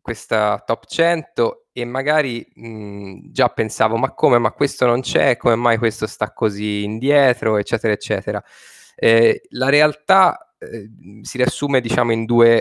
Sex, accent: male, native